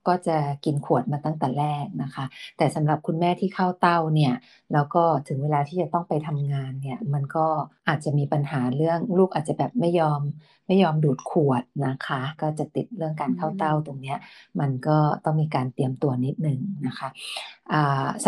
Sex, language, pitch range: female, Thai, 145-180 Hz